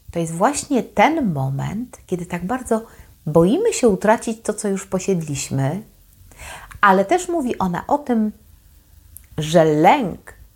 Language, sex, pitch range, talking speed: Polish, female, 150-195 Hz, 130 wpm